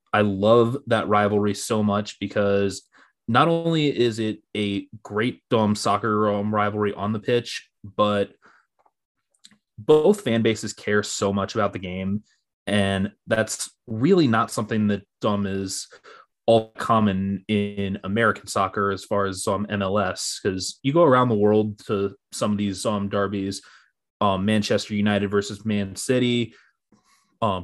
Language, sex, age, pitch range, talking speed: English, male, 20-39, 100-115 Hz, 145 wpm